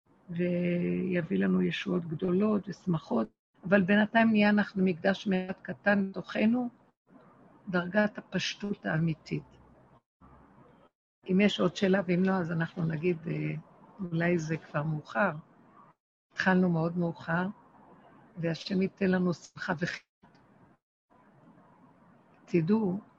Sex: female